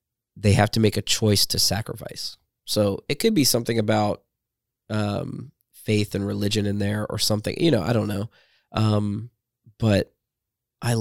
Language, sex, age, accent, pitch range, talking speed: English, male, 20-39, American, 105-115 Hz, 165 wpm